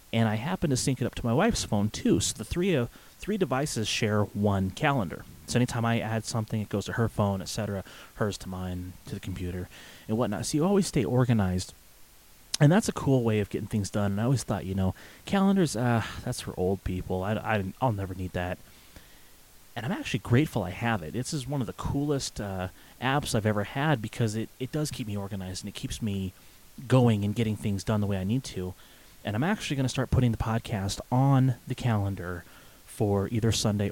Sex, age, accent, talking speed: male, 30-49, American, 225 wpm